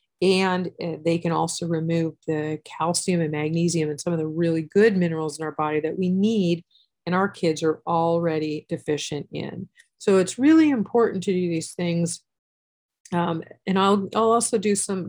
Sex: female